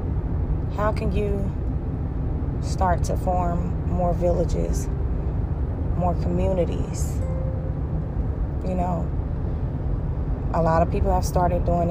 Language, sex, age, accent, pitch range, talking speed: English, female, 30-49, American, 80-90 Hz, 95 wpm